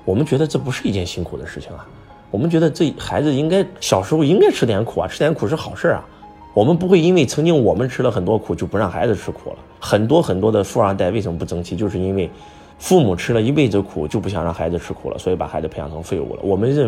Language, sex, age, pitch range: Chinese, male, 20-39, 90-130 Hz